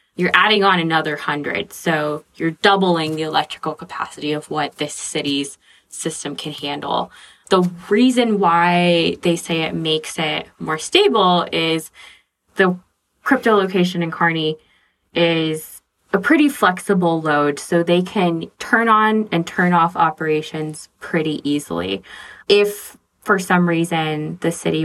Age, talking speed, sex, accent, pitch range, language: 20-39, 135 wpm, female, American, 155-180 Hz, English